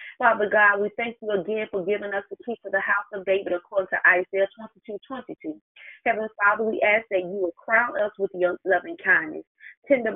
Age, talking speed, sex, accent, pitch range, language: 30-49, 205 wpm, female, American, 175-215 Hz, English